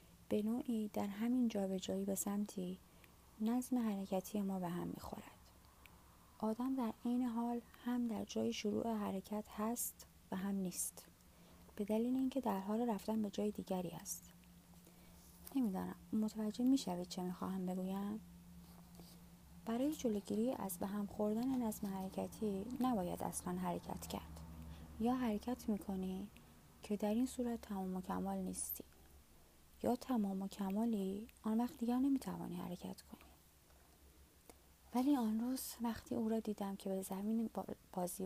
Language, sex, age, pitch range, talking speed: Persian, female, 30-49, 180-230 Hz, 135 wpm